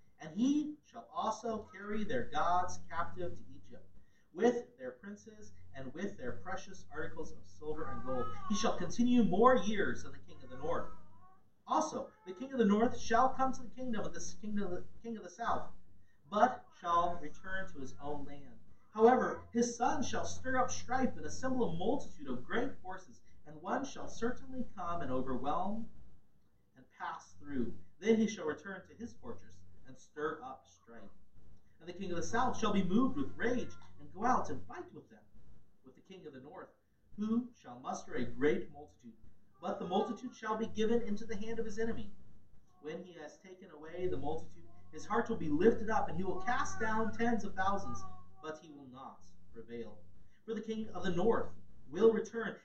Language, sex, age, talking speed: English, male, 40-59, 190 wpm